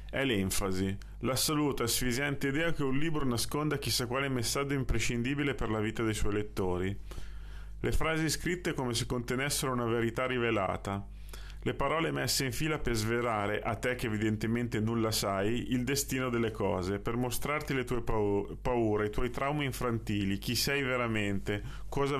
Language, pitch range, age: Italian, 110-140 Hz, 30-49